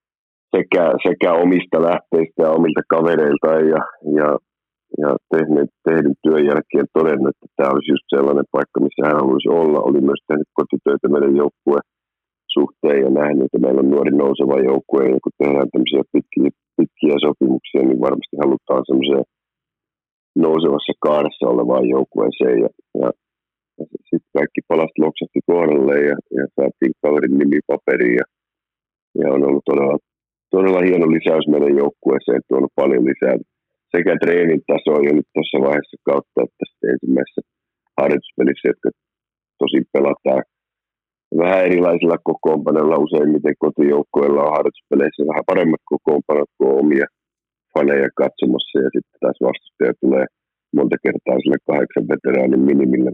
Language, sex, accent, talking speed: Finnish, male, native, 125 wpm